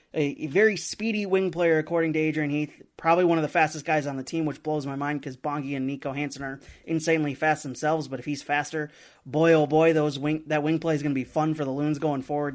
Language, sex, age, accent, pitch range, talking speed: English, male, 30-49, American, 150-165 Hz, 245 wpm